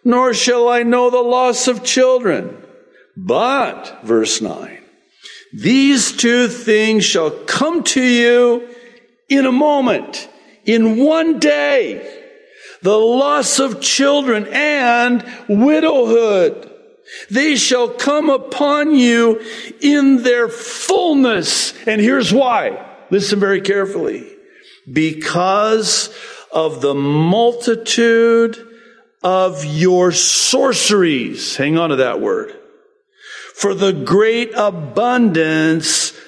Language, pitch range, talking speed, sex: English, 165-275 Hz, 100 wpm, male